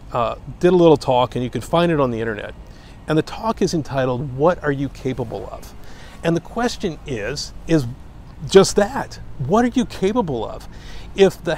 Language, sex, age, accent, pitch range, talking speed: English, male, 50-69, American, 105-160 Hz, 190 wpm